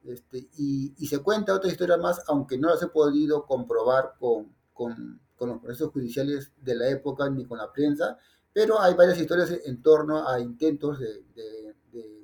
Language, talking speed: Spanish, 185 wpm